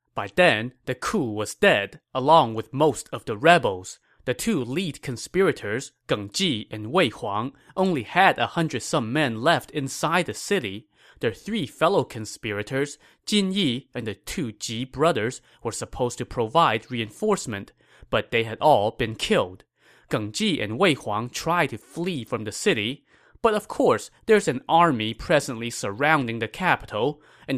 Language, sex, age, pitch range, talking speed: English, male, 20-39, 115-155 Hz, 165 wpm